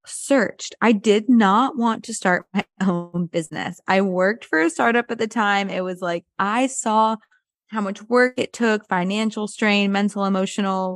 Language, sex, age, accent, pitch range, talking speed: English, female, 20-39, American, 180-220 Hz, 175 wpm